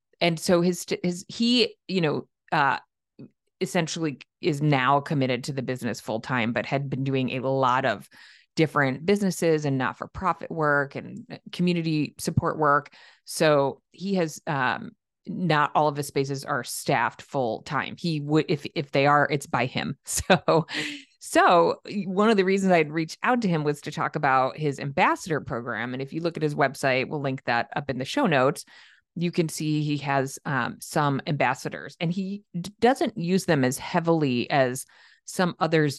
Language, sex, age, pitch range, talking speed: English, female, 30-49, 135-170 Hz, 180 wpm